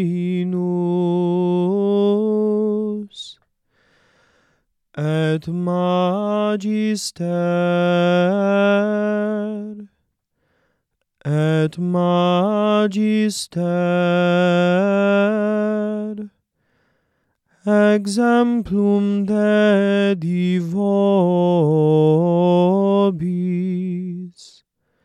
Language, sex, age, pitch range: English, male, 30-49, 175-205 Hz